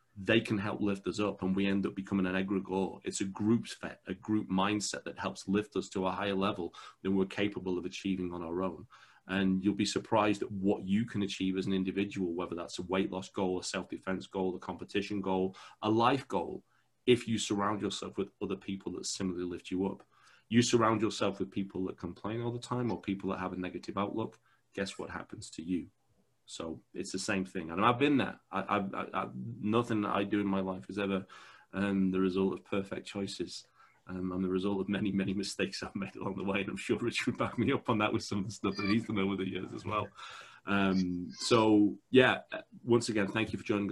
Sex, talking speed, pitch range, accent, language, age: male, 230 wpm, 95-105 Hz, British, English, 30-49